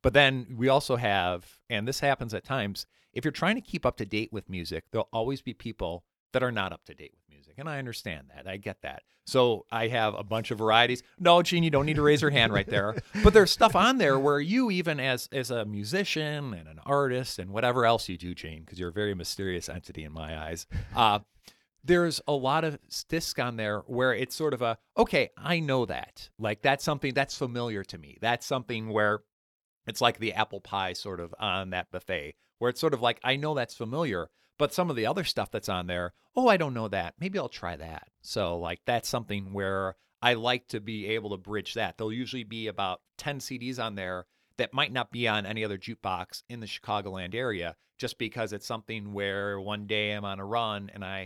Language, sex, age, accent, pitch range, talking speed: English, male, 40-59, American, 100-135 Hz, 230 wpm